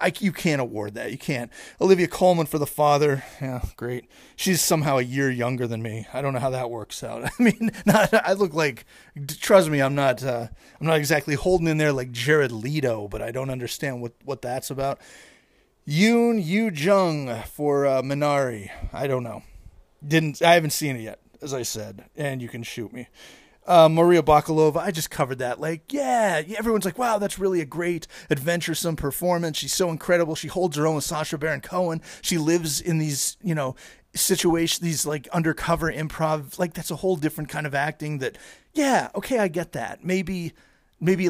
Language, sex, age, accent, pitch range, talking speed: English, male, 30-49, American, 140-185 Hz, 200 wpm